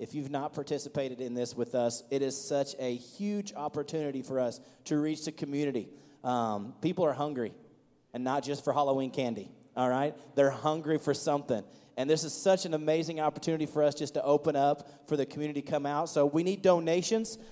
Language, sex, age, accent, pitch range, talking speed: English, male, 30-49, American, 140-170 Hz, 200 wpm